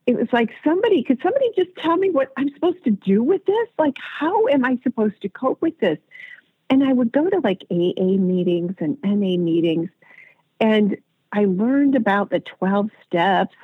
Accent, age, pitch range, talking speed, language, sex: American, 50-69, 180-275 Hz, 190 wpm, English, female